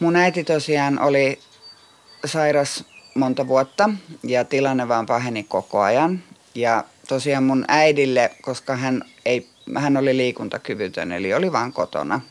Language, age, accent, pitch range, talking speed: Finnish, 30-49, native, 120-145 Hz, 130 wpm